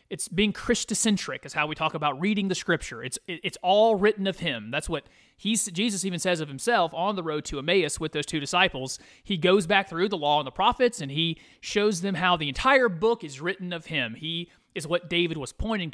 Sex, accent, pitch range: male, American, 155-210 Hz